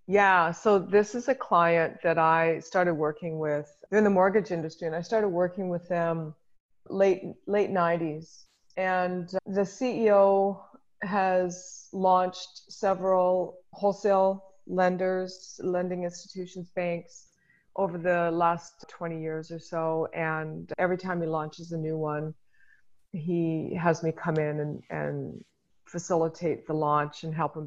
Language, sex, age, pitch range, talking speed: English, female, 30-49, 160-185 Hz, 135 wpm